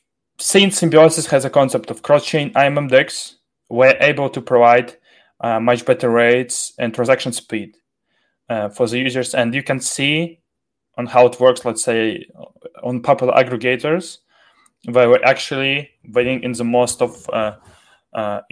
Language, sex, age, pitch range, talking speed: English, male, 20-39, 120-150 Hz, 150 wpm